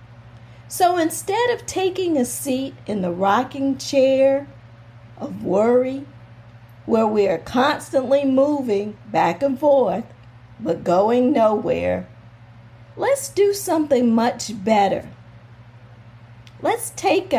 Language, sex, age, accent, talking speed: English, female, 50-69, American, 105 wpm